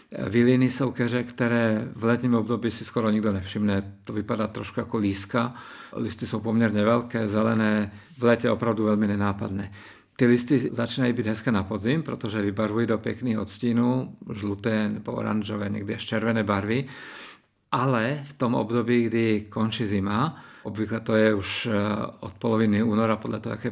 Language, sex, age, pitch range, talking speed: Czech, male, 50-69, 105-120 Hz, 155 wpm